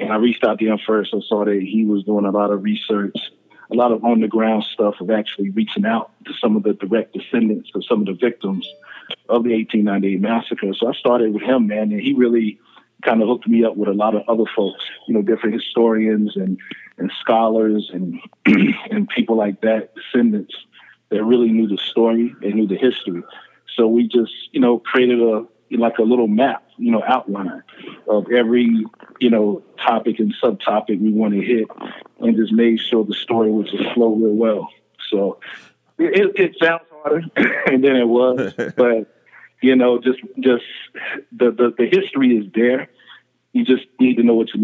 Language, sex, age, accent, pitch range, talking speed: English, male, 40-59, American, 105-120 Hz, 195 wpm